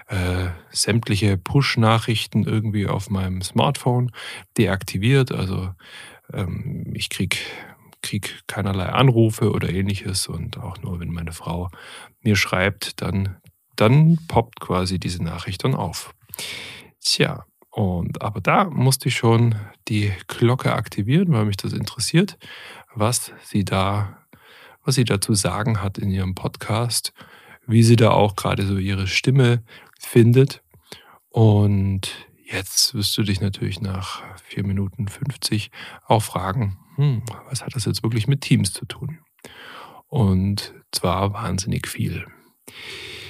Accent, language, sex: German, German, male